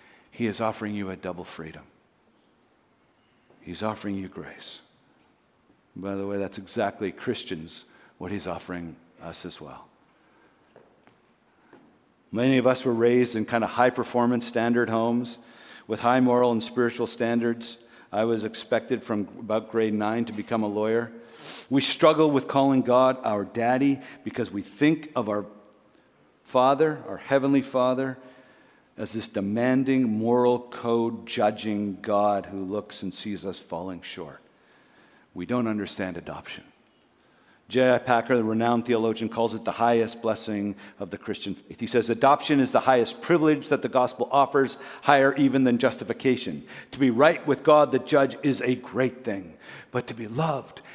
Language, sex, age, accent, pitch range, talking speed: English, male, 50-69, American, 105-130 Hz, 150 wpm